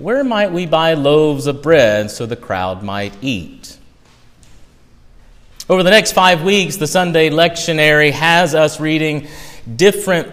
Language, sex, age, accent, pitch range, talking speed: English, male, 30-49, American, 120-165 Hz, 140 wpm